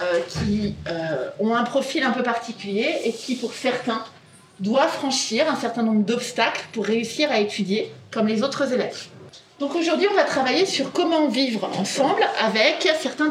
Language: French